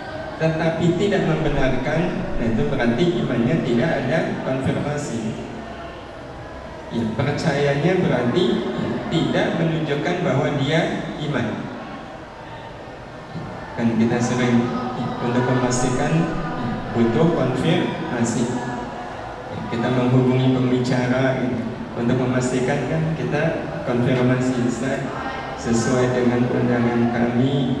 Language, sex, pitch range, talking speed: Indonesian, male, 120-130 Hz, 80 wpm